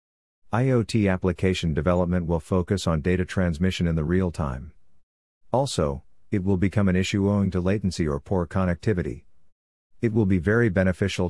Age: 50-69